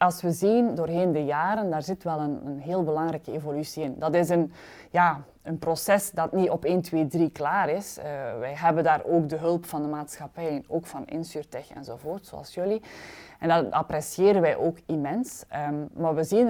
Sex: female